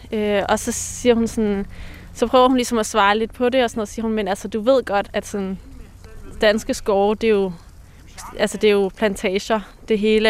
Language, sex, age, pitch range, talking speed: Danish, female, 20-39, 195-230 Hz, 165 wpm